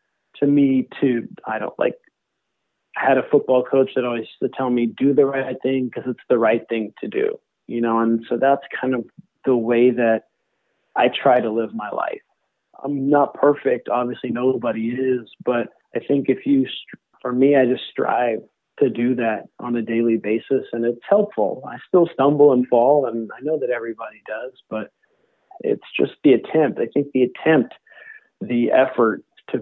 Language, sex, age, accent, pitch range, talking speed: English, male, 40-59, American, 115-135 Hz, 190 wpm